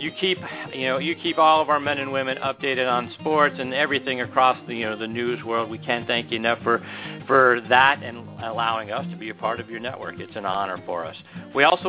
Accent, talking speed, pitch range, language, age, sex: American, 245 wpm, 130-170 Hz, English, 40-59, male